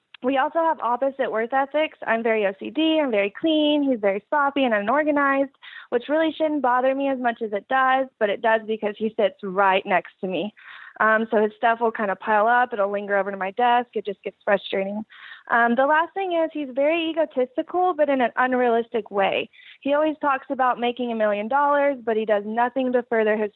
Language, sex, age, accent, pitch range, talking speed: English, female, 20-39, American, 215-280 Hz, 215 wpm